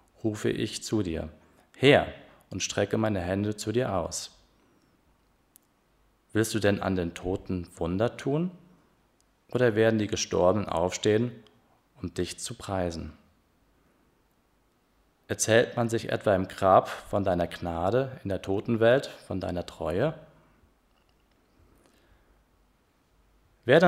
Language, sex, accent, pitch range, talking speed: German, male, German, 90-115 Hz, 115 wpm